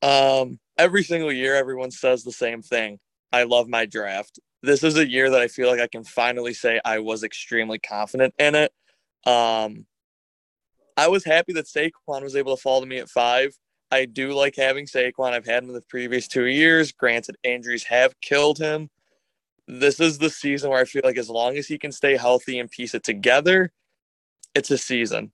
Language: English